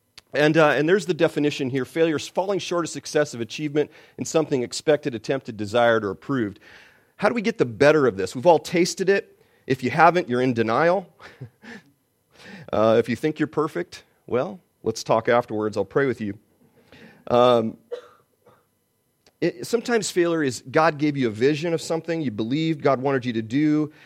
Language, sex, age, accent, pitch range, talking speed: English, male, 40-59, American, 120-155 Hz, 180 wpm